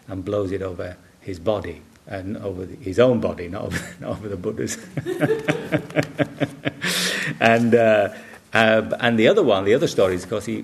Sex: male